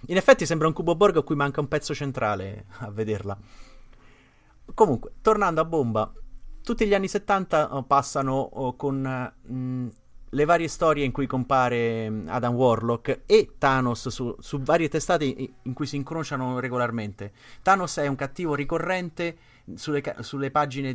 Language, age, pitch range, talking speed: Italian, 30-49, 120-155 Hz, 150 wpm